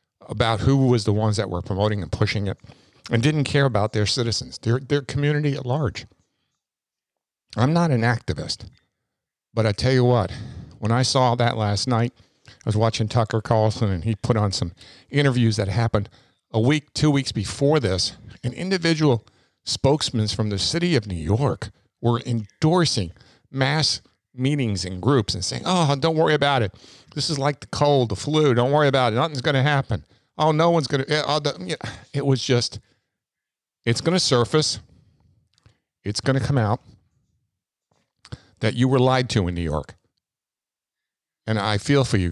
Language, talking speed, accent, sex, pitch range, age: English, 175 wpm, American, male, 105-130 Hz, 50-69